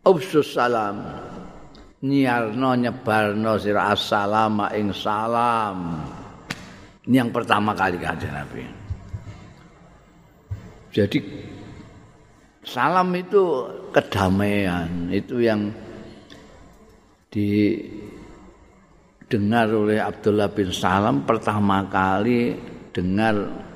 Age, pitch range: 50-69, 95-120 Hz